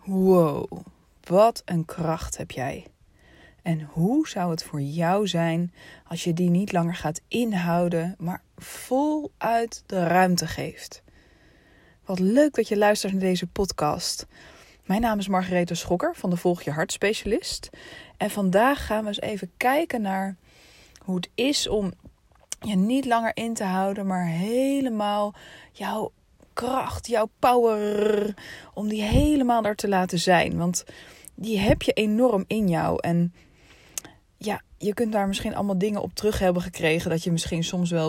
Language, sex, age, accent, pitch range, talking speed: Dutch, female, 20-39, Dutch, 170-215 Hz, 155 wpm